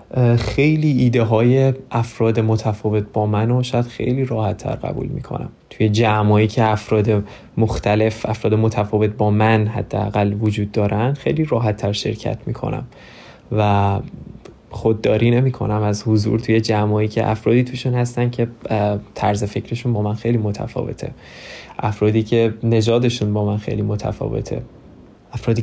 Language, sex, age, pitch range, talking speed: Persian, male, 20-39, 105-120 Hz, 130 wpm